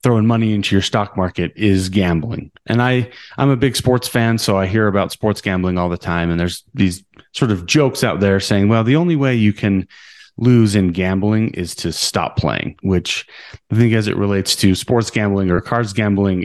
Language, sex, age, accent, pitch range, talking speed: English, male, 30-49, American, 90-110 Hz, 210 wpm